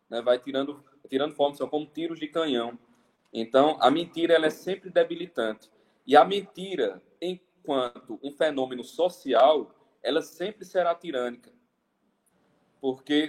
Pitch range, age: 140-190 Hz, 20-39